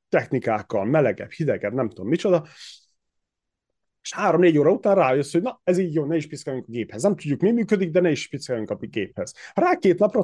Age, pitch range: 30-49, 125-185 Hz